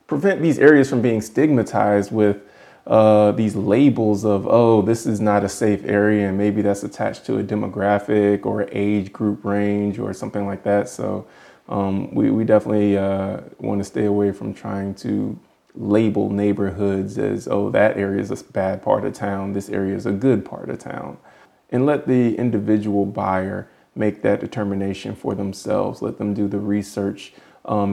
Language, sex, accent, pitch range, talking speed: English, male, American, 100-105 Hz, 175 wpm